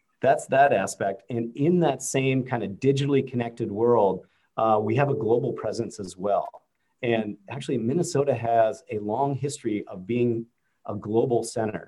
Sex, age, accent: male, 40-59, American